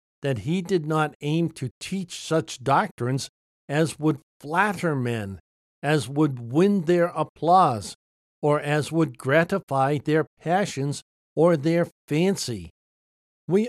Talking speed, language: 125 wpm, English